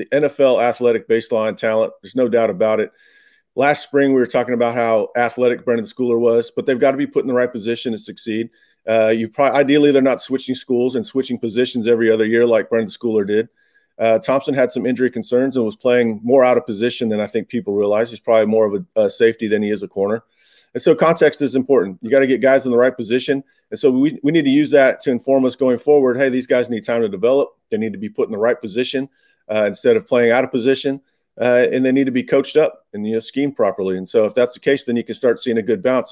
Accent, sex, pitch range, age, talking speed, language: American, male, 110-130 Hz, 30-49, 260 wpm, English